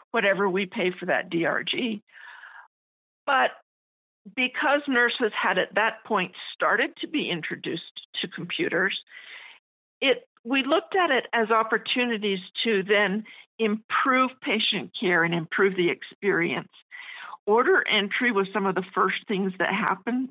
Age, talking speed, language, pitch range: 50-69, 135 wpm, English, 190-255 Hz